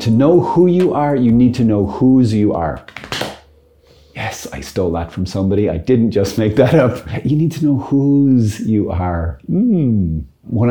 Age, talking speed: 30-49, 185 wpm